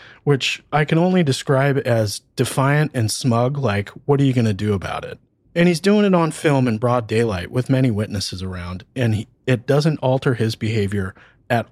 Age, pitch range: 30-49, 115-155 Hz